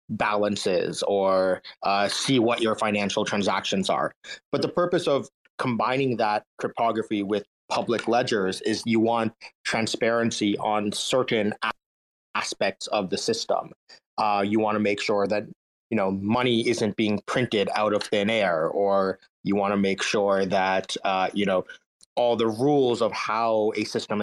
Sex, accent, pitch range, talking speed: male, American, 100-120 Hz, 155 wpm